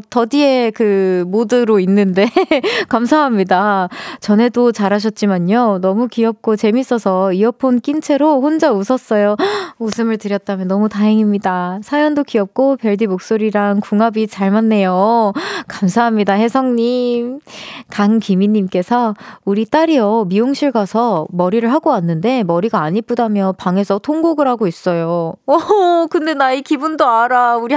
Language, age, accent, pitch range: Korean, 20-39, native, 205-275 Hz